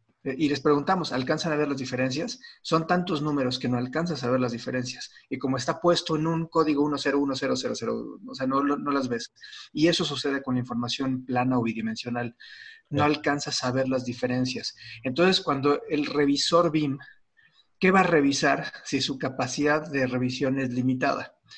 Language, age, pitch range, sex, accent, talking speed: Spanish, 40-59, 130-160 Hz, male, Mexican, 175 wpm